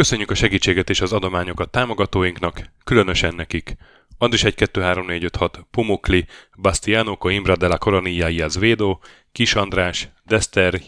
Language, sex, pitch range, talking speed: Hungarian, male, 90-105 Hz, 105 wpm